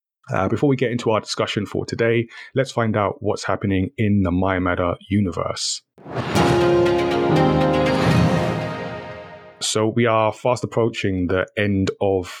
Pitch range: 95-110 Hz